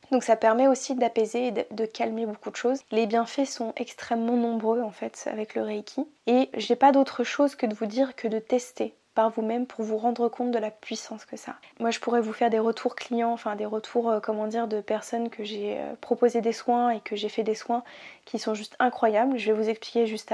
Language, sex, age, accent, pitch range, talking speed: French, female, 20-39, French, 220-255 Hz, 235 wpm